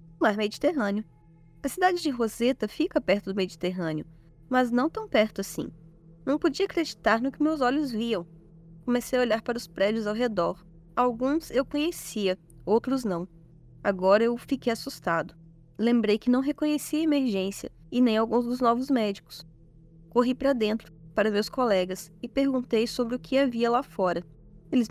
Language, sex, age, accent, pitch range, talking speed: Portuguese, female, 10-29, Brazilian, 170-260 Hz, 165 wpm